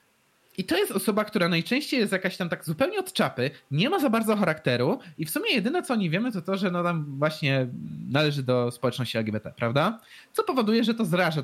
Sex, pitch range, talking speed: male, 135-230 Hz, 220 wpm